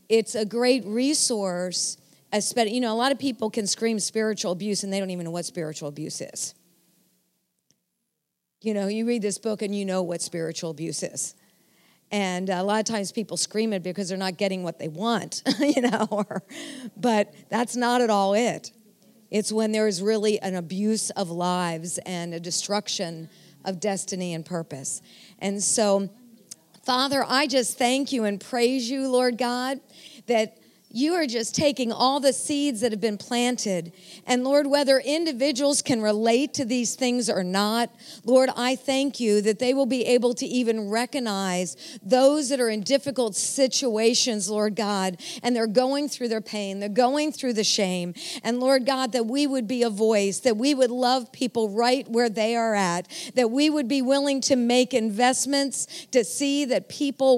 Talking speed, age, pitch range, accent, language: 180 wpm, 50-69, 200-255 Hz, American, English